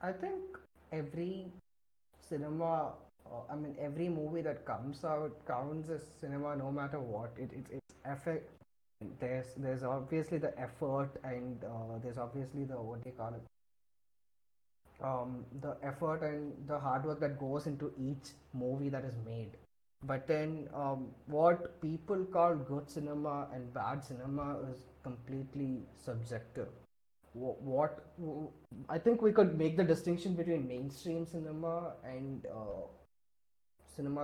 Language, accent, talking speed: English, Indian, 140 wpm